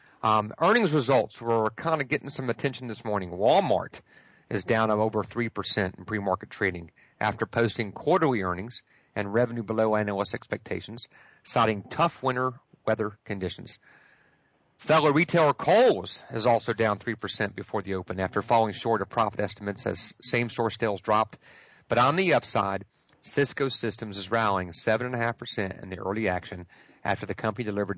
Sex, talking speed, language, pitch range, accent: male, 155 wpm, English, 110-145 Hz, American